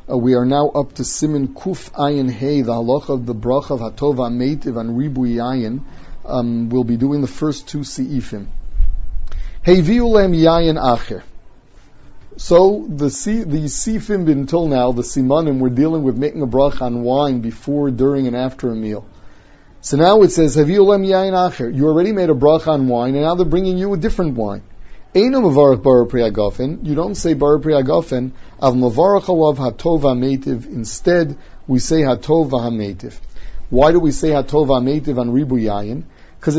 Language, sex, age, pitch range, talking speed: English, male, 40-59, 120-150 Hz, 155 wpm